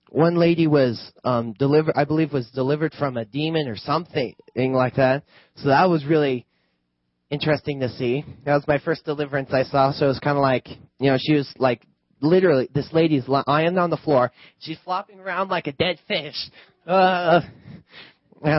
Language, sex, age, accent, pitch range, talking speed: English, male, 20-39, American, 125-155 Hz, 185 wpm